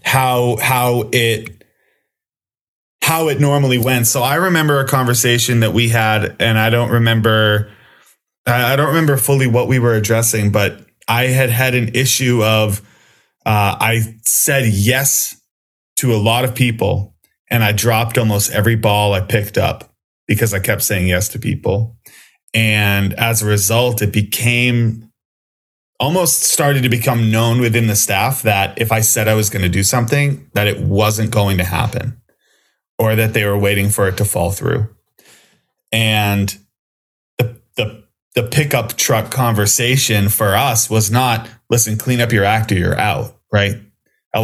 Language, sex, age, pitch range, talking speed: English, male, 20-39, 105-125 Hz, 160 wpm